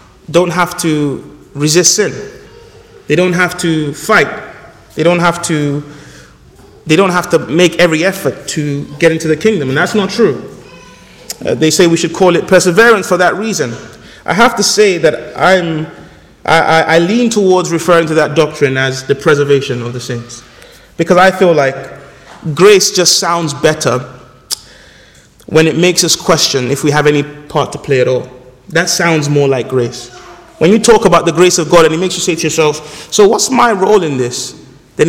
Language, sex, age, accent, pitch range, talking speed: English, male, 30-49, Nigerian, 150-180 Hz, 190 wpm